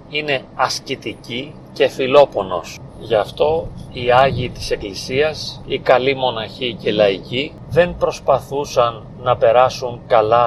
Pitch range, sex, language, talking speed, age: 120-155 Hz, male, Greek, 115 wpm, 40-59